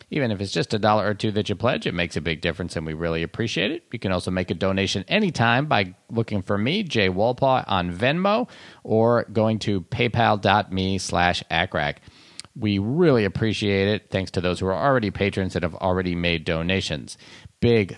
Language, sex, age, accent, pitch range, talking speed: English, male, 40-59, American, 90-115 Hz, 195 wpm